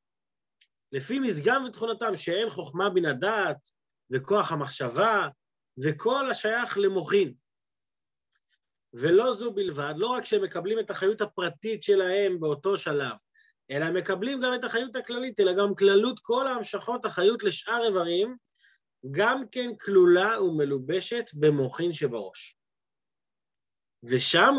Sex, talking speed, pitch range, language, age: male, 110 wpm, 165-235 Hz, Hebrew, 30-49